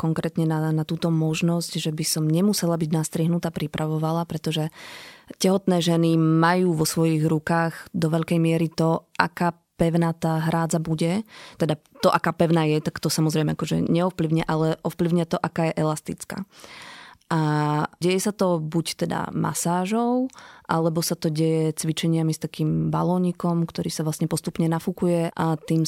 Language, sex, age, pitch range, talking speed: Slovak, female, 20-39, 160-175 Hz, 155 wpm